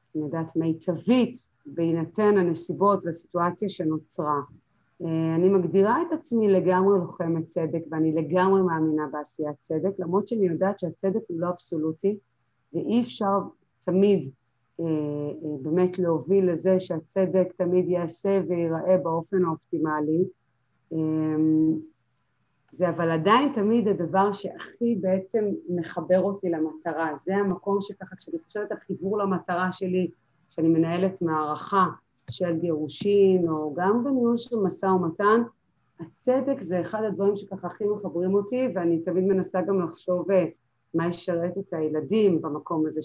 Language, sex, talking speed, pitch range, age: Hebrew, female, 125 wpm, 160-195 Hz, 30-49